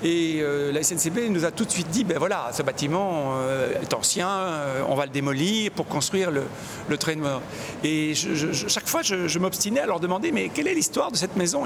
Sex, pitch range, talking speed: male, 160-215 Hz, 205 wpm